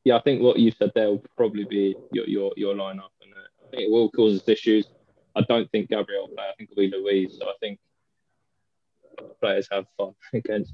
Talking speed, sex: 220 wpm, male